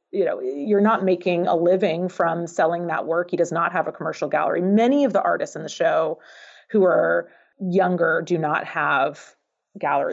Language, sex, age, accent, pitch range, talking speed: English, female, 30-49, American, 165-210 Hz, 190 wpm